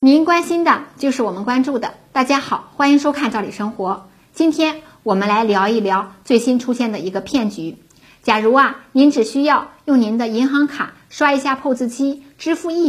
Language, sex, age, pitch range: Chinese, female, 50-69, 210-280 Hz